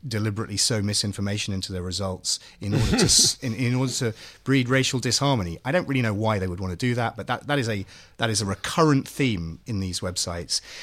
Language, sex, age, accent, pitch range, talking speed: English, male, 30-49, British, 95-150 Hz, 220 wpm